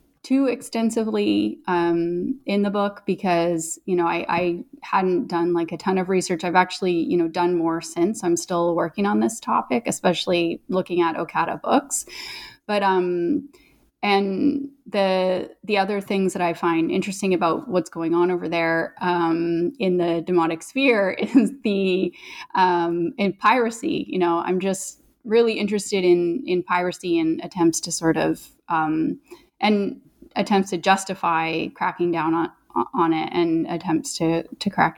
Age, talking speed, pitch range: 30-49, 160 wpm, 170-215 Hz